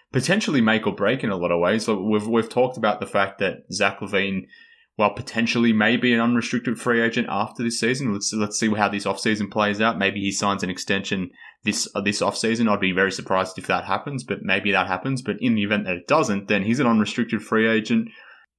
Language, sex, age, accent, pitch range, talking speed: English, male, 20-39, Australian, 100-120 Hz, 230 wpm